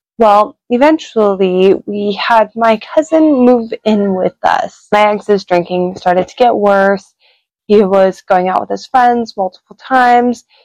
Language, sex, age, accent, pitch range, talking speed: English, female, 20-39, American, 185-225 Hz, 145 wpm